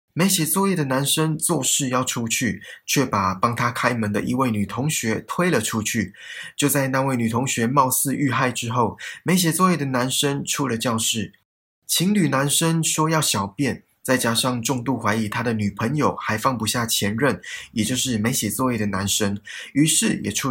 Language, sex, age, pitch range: Chinese, male, 20-39, 110-145 Hz